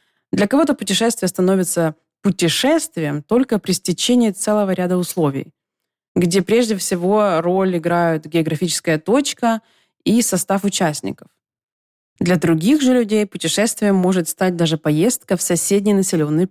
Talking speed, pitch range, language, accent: 120 wpm, 170-225 Hz, Russian, native